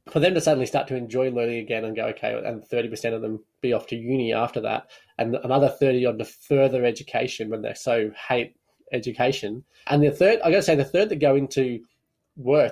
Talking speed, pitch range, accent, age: 220 wpm, 125-145 Hz, Australian, 20-39